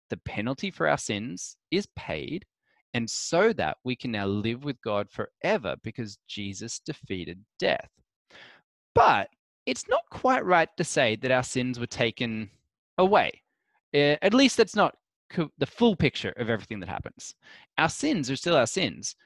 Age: 20-39